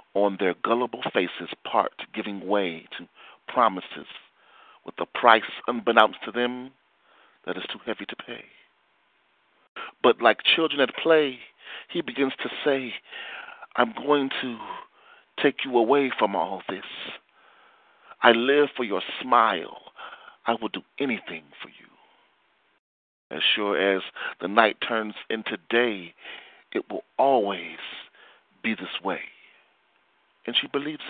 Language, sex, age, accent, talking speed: English, male, 40-59, American, 130 wpm